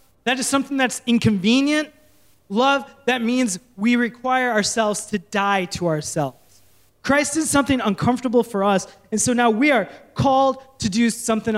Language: English